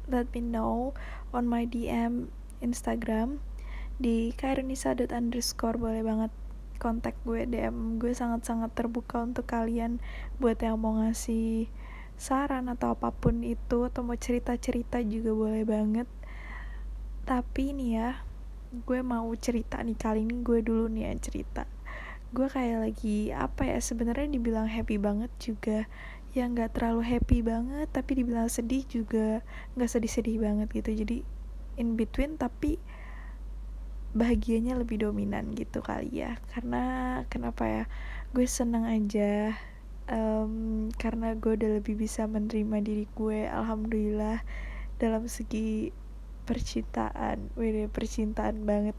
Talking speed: 125 wpm